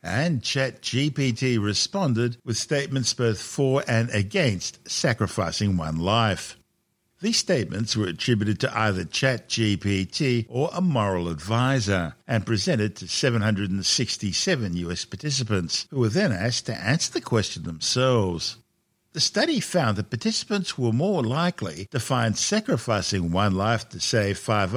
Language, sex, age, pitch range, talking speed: English, male, 60-79, 100-130 Hz, 130 wpm